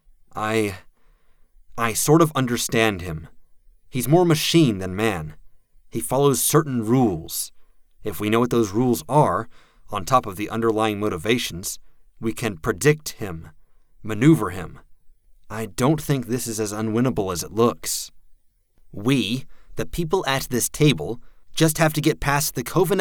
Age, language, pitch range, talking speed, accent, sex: 30-49, English, 105-150 Hz, 150 wpm, American, male